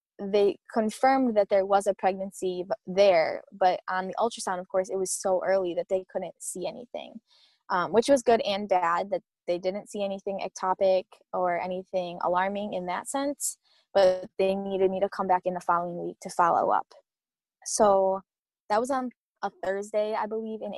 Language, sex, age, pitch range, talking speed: English, female, 20-39, 185-220 Hz, 185 wpm